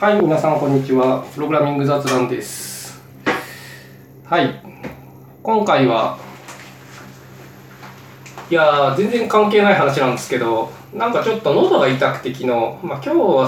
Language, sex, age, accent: Japanese, male, 20-39, native